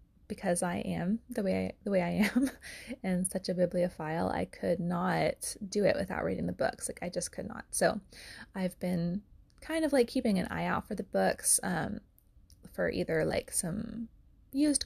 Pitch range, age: 180-230 Hz, 20-39